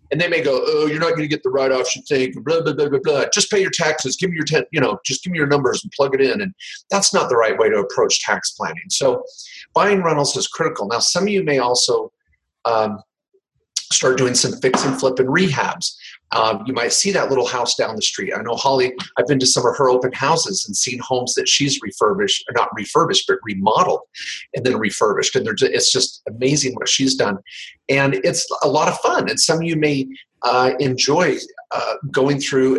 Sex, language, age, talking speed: male, English, 40-59, 225 wpm